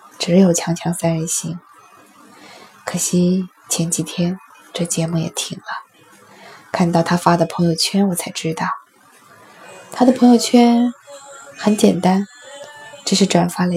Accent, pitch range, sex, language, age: native, 170-195 Hz, female, Chinese, 20-39